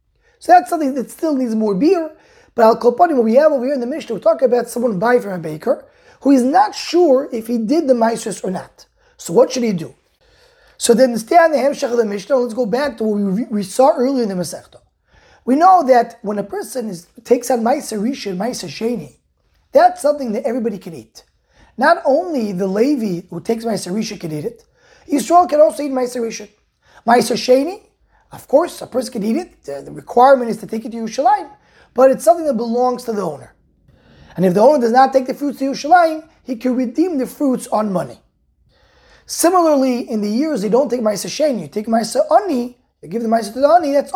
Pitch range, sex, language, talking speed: 225-290 Hz, male, English, 220 wpm